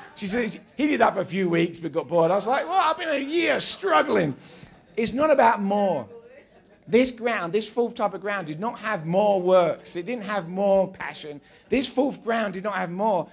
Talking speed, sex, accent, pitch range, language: 220 wpm, male, British, 165-220 Hz, English